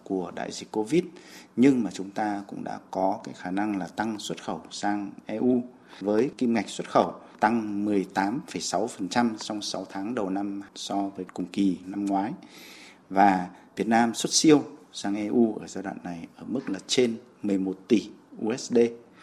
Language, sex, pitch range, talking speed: Vietnamese, male, 95-115 Hz, 190 wpm